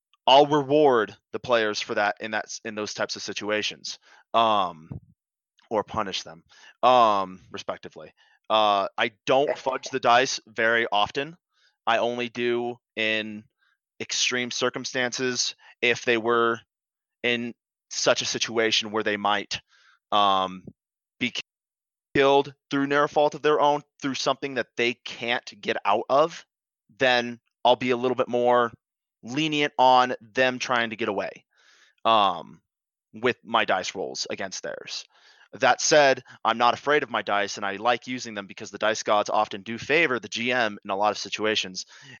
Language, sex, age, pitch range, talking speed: English, male, 20-39, 105-130 Hz, 155 wpm